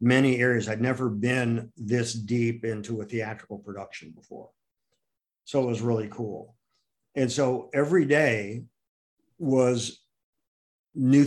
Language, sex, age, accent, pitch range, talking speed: English, male, 50-69, American, 115-135 Hz, 120 wpm